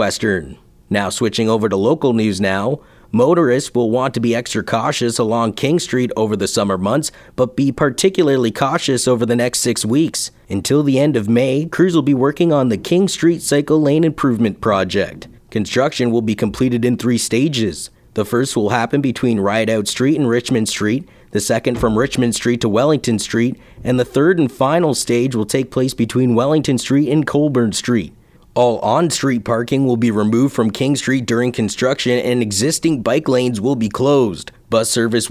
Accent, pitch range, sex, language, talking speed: American, 115-140 Hz, male, English, 185 wpm